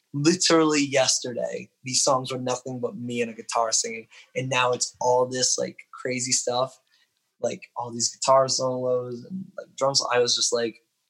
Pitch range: 115-130 Hz